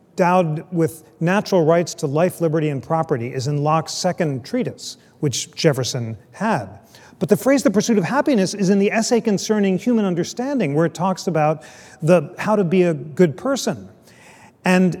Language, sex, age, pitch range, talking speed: English, male, 40-59, 150-205 Hz, 170 wpm